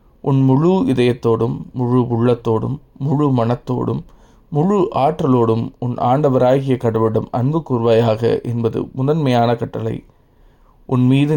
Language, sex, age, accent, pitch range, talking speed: Tamil, male, 20-39, native, 115-130 Hz, 95 wpm